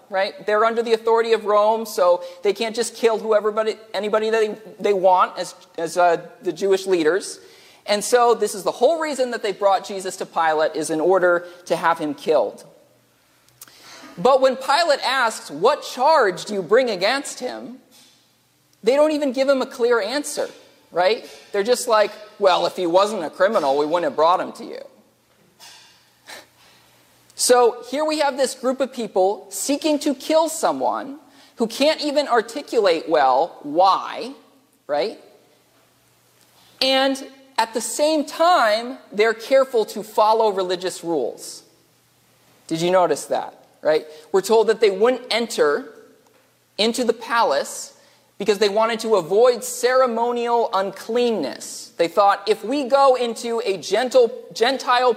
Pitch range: 200-270 Hz